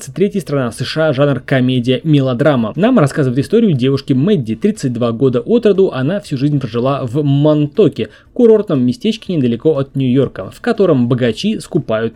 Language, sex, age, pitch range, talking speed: Russian, male, 20-39, 130-170 Hz, 145 wpm